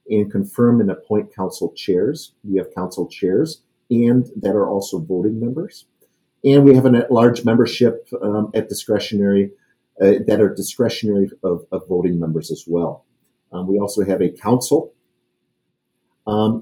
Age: 50-69